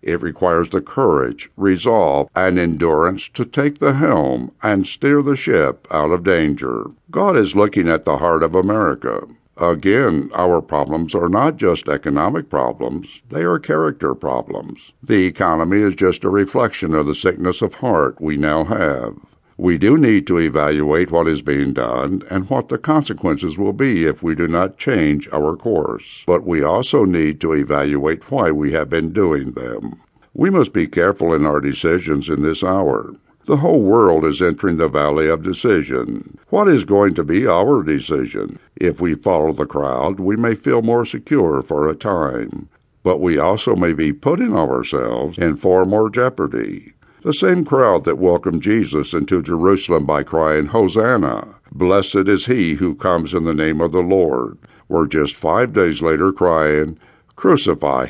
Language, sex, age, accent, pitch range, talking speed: English, male, 60-79, American, 75-100 Hz, 170 wpm